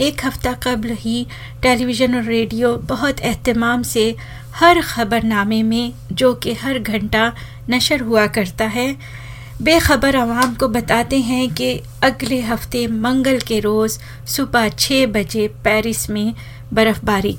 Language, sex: Hindi, female